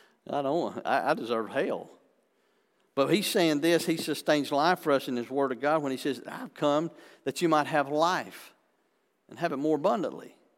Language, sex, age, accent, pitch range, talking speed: English, male, 50-69, American, 120-150 Hz, 195 wpm